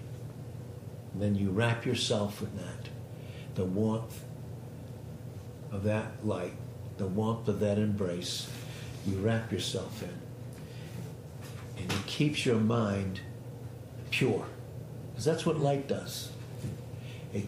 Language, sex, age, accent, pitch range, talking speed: English, male, 60-79, American, 115-130 Hz, 115 wpm